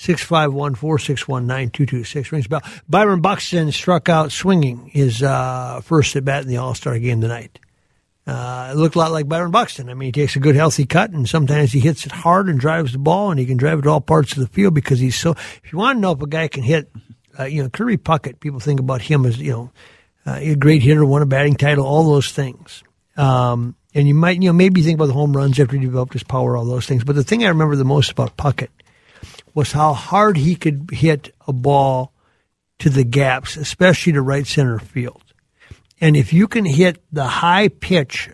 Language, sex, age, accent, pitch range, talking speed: English, male, 60-79, American, 130-160 Hz, 245 wpm